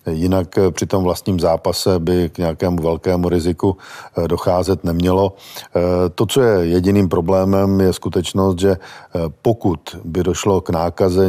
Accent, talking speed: native, 135 wpm